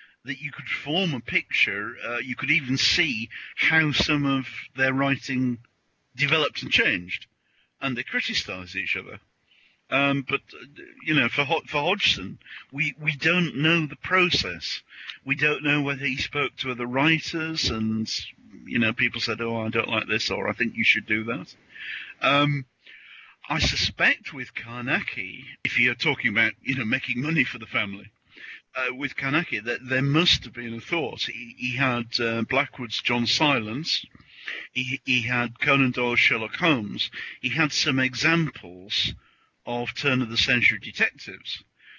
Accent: British